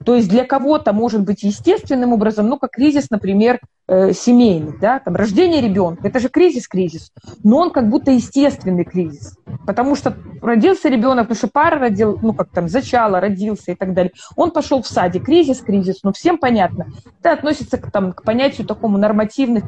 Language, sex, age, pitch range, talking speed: Russian, female, 20-39, 195-260 Hz, 185 wpm